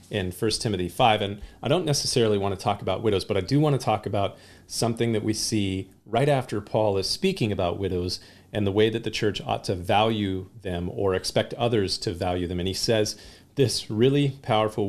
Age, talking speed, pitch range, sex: 40-59, 215 wpm, 100-120 Hz, male